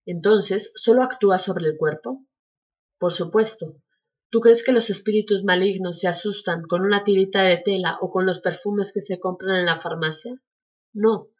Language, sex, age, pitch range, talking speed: Spanish, female, 30-49, 180-220 Hz, 170 wpm